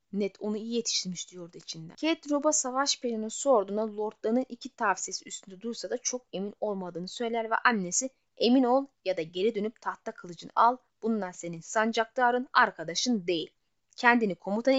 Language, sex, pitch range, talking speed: Turkish, female, 195-265 Hz, 160 wpm